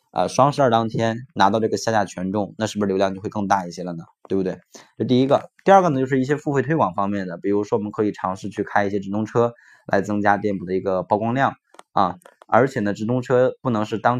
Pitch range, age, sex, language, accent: 100-125 Hz, 20-39, male, Chinese, native